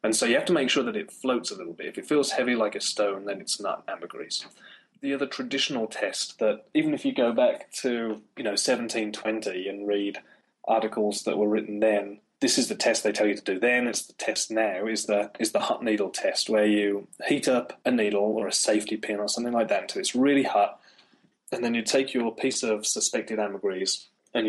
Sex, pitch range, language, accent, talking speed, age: male, 105-125 Hz, English, British, 230 wpm, 30-49